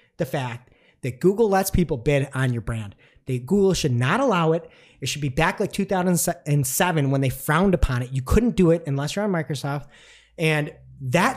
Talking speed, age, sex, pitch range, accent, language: 190 wpm, 30-49, male, 150-220 Hz, American, English